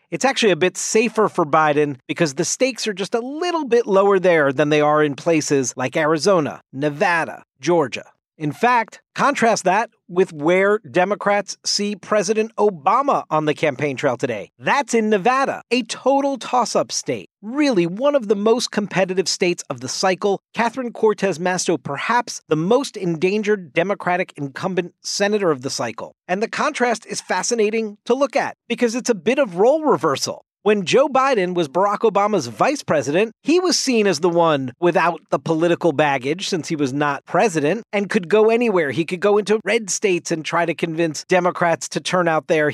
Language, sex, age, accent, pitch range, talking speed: English, male, 40-59, American, 160-220 Hz, 180 wpm